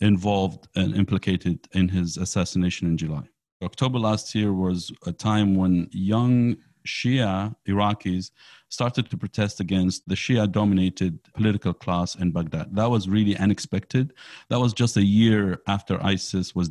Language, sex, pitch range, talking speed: English, male, 90-105 Hz, 145 wpm